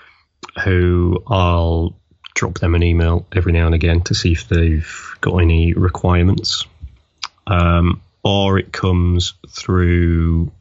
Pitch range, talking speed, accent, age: 85-100 Hz, 125 wpm, British, 30-49